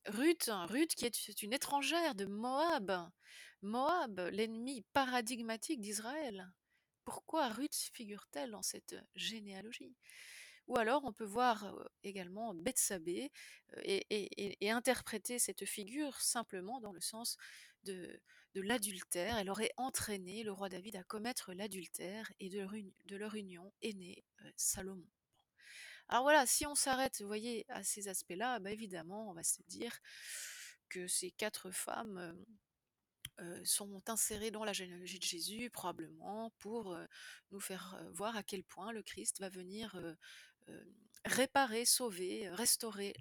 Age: 30-49